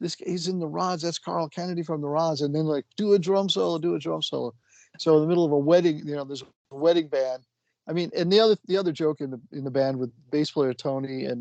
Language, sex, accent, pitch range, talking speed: English, male, American, 130-165 Hz, 285 wpm